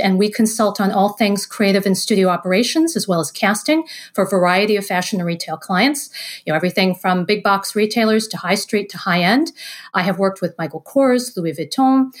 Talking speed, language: 210 wpm, English